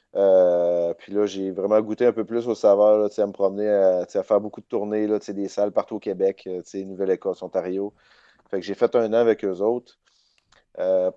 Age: 30-49